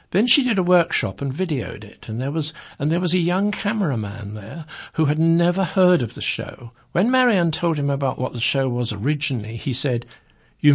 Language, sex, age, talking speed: English, male, 60-79, 210 wpm